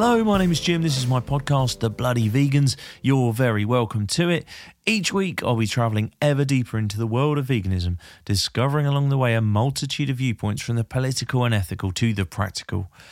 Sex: male